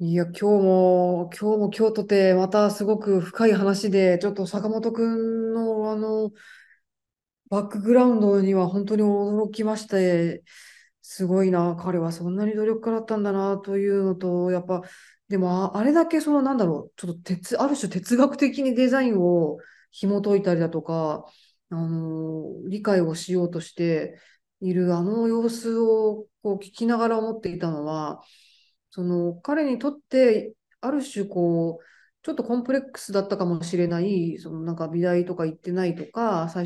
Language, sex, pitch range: Japanese, female, 175-225 Hz